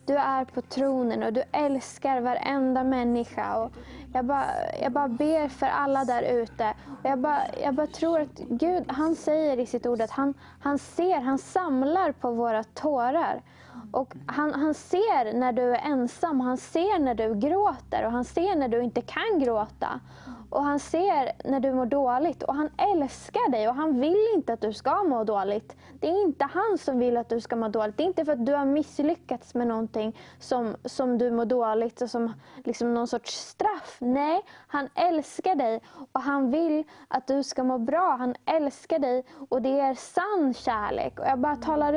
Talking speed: 195 wpm